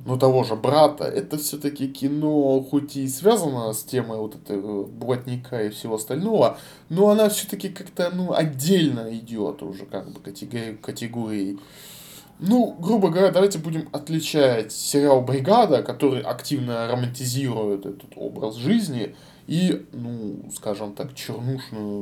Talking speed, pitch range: 130 wpm, 110-145 Hz